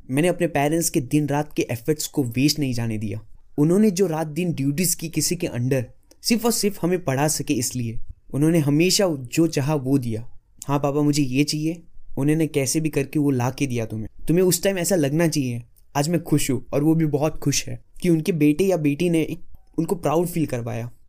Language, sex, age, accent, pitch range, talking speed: Hindi, male, 20-39, native, 135-175 Hz, 215 wpm